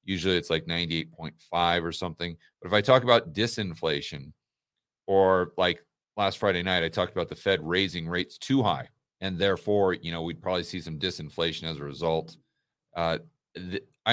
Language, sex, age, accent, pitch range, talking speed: English, male, 40-59, American, 85-125 Hz, 170 wpm